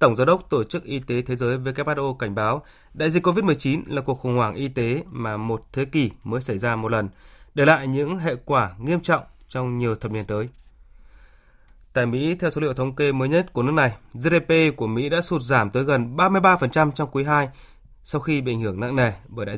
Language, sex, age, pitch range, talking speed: Vietnamese, male, 20-39, 115-155 Hz, 230 wpm